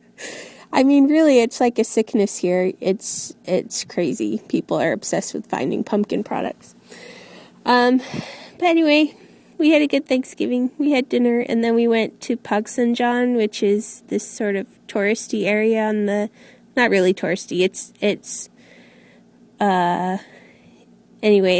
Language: English